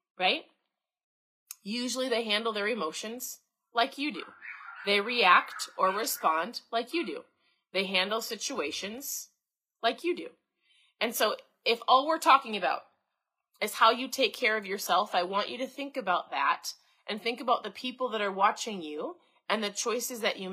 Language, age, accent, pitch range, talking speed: English, 30-49, American, 190-255 Hz, 165 wpm